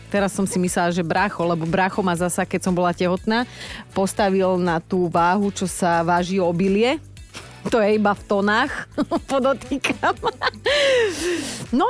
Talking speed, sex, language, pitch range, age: 145 wpm, female, Slovak, 170-225 Hz, 30-49